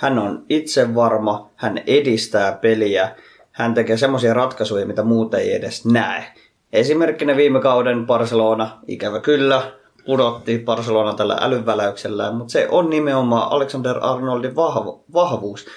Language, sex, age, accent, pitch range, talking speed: Finnish, male, 20-39, native, 110-130 Hz, 130 wpm